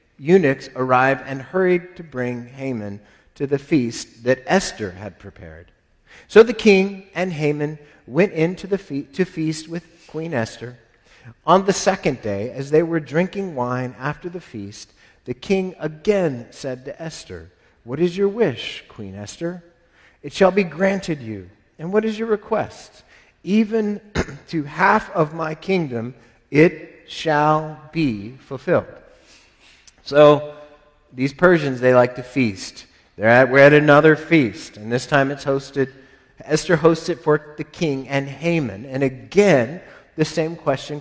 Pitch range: 130-180 Hz